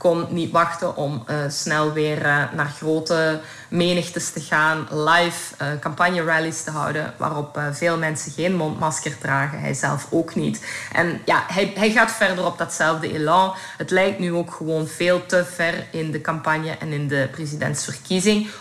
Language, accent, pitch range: Dutch, Belgian, 155-175 Hz